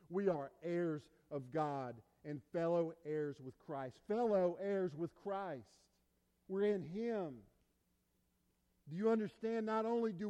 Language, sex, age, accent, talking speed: English, male, 50-69, American, 135 wpm